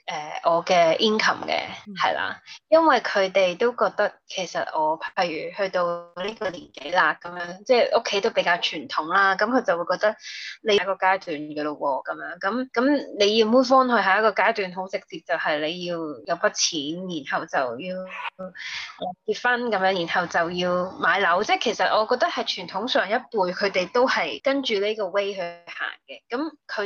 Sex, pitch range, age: female, 185-240 Hz, 20-39